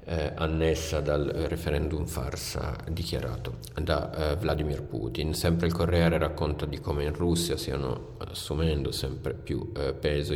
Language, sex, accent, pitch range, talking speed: Italian, male, native, 75-85 Hz, 145 wpm